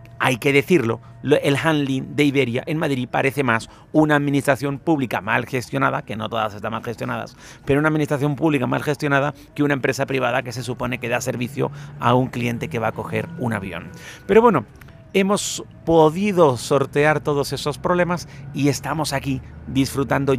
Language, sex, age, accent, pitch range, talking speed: Spanish, male, 40-59, Mexican, 130-165 Hz, 175 wpm